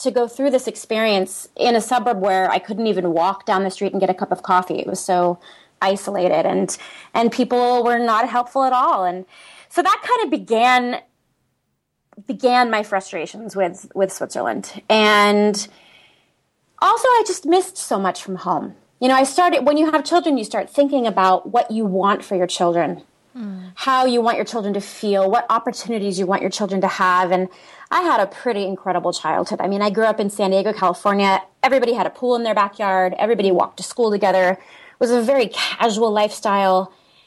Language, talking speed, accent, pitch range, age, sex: English, 195 wpm, American, 190-245 Hz, 30-49, female